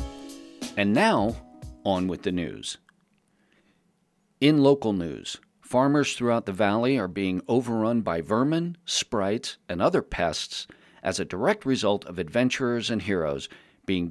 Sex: male